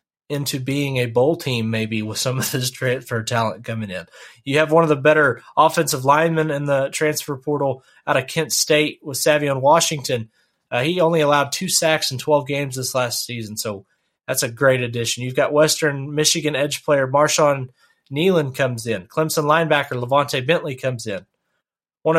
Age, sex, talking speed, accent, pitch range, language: 30-49, male, 180 wpm, American, 125-165 Hz, English